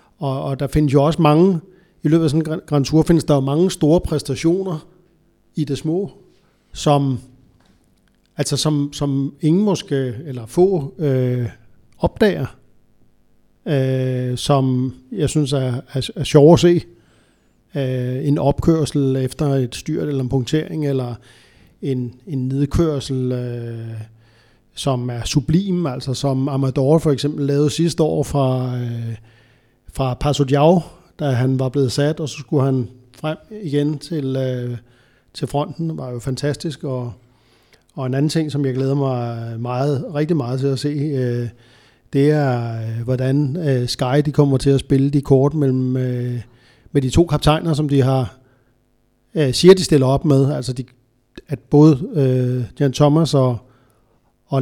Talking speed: 160 wpm